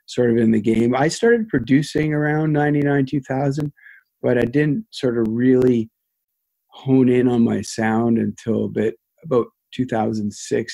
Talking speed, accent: 150 wpm, American